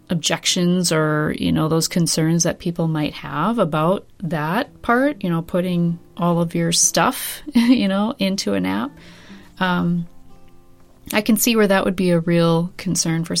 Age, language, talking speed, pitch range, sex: 30-49, English, 160 wpm, 155-185 Hz, female